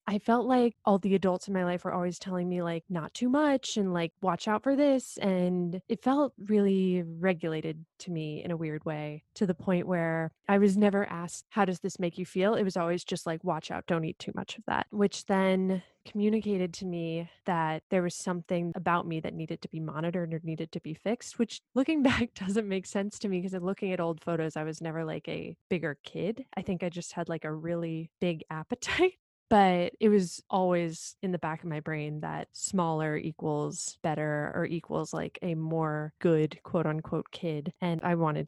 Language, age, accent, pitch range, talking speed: English, 20-39, American, 160-195 Hz, 215 wpm